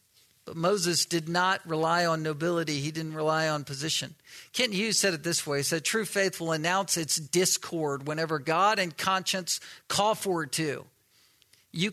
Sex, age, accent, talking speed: male, 50-69, American, 170 wpm